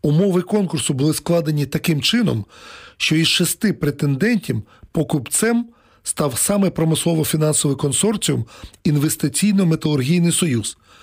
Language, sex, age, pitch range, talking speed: Ukrainian, male, 40-59, 135-170 Hz, 90 wpm